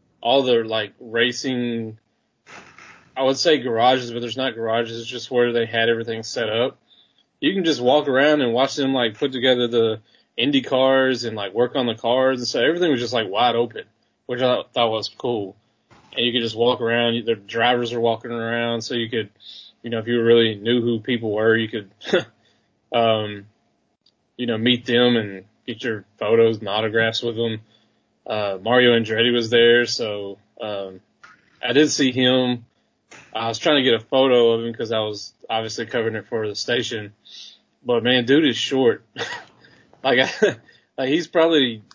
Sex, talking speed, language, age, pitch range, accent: male, 185 wpm, English, 20-39, 110-125 Hz, American